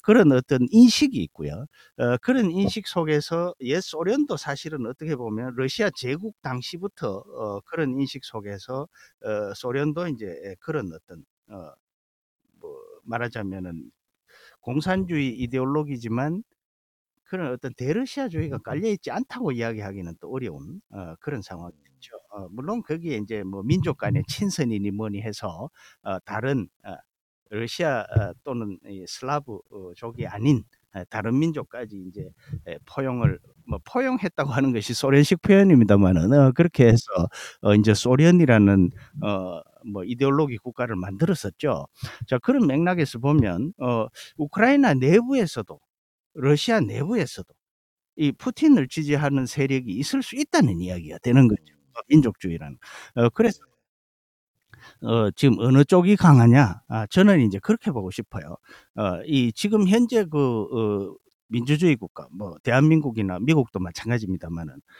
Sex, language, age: male, Korean, 50-69